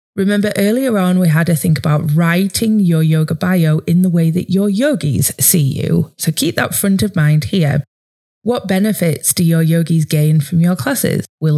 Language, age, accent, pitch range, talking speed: English, 20-39, British, 150-195 Hz, 190 wpm